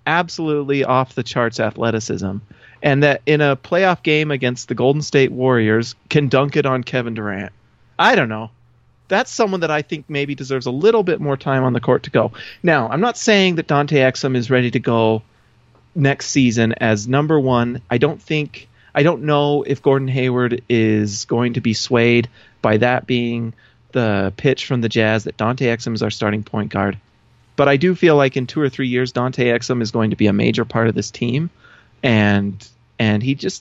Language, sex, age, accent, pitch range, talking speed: English, male, 30-49, American, 115-145 Hz, 205 wpm